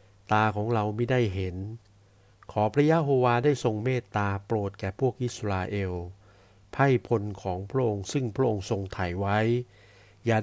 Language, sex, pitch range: Thai, male, 100-125 Hz